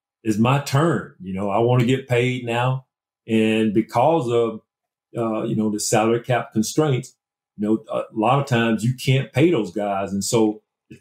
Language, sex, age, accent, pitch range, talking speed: English, male, 50-69, American, 110-135 Hz, 185 wpm